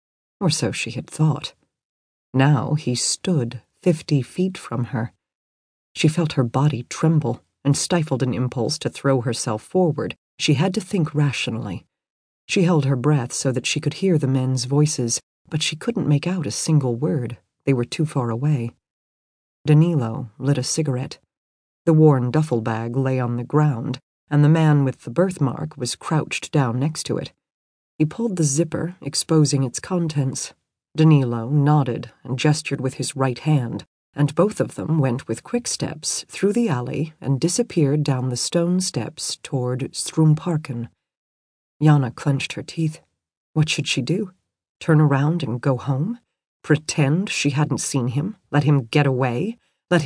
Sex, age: female, 40-59